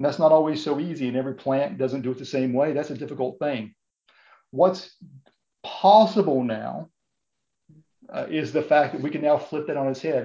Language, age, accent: English, 50-69, American